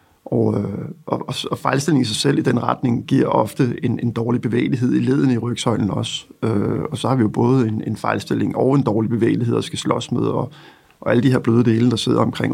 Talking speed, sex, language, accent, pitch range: 235 wpm, male, Danish, native, 110-130 Hz